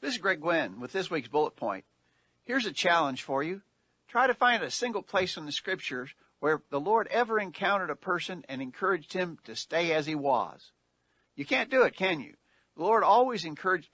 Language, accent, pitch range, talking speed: English, American, 140-195 Hz, 205 wpm